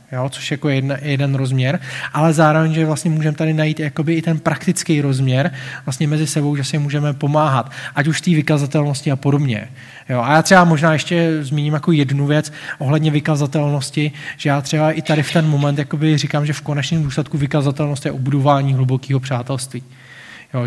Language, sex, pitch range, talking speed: Czech, male, 135-155 Hz, 185 wpm